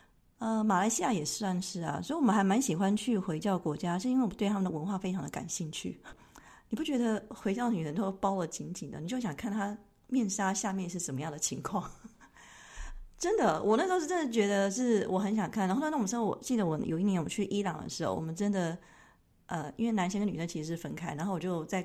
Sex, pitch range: female, 180-225 Hz